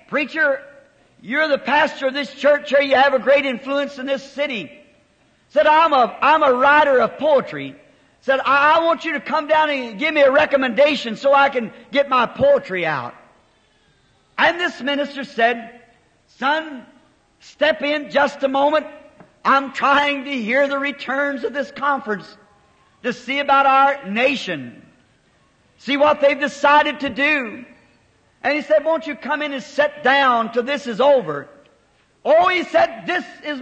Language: English